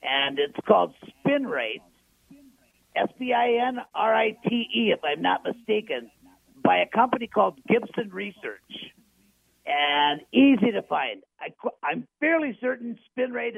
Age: 50-69